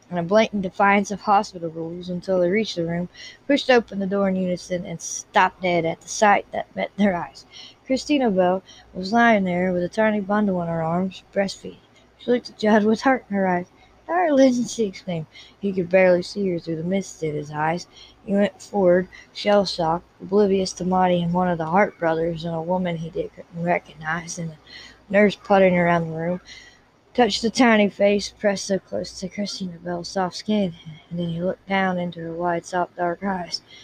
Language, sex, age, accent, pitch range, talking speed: English, female, 20-39, American, 165-200 Hz, 200 wpm